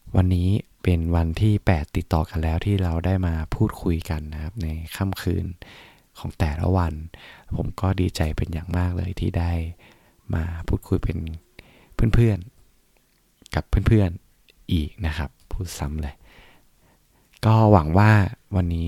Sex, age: male, 20-39